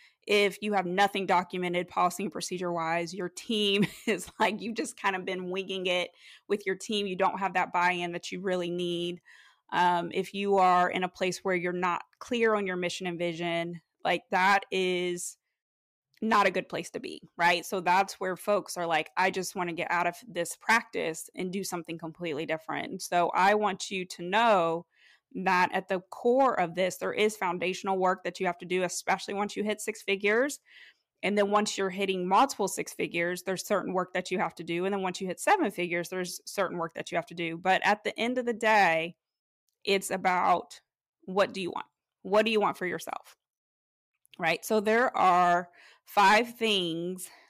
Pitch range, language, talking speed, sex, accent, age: 175-200 Hz, English, 205 wpm, female, American, 20-39